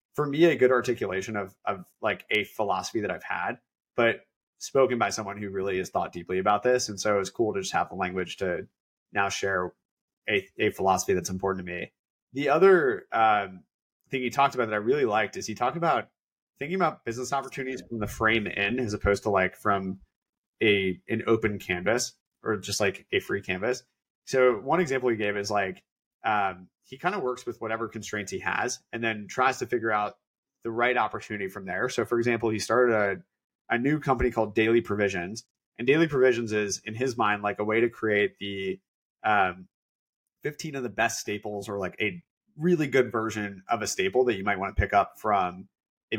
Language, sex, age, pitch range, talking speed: English, male, 30-49, 100-125 Hz, 205 wpm